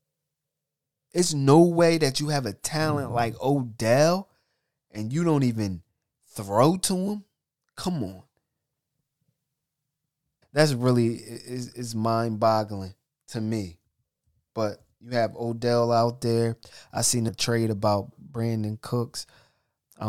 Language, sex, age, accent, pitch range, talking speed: English, male, 20-39, American, 110-145 Hz, 115 wpm